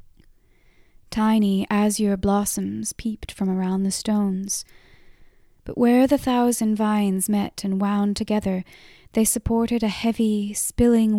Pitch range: 195-220 Hz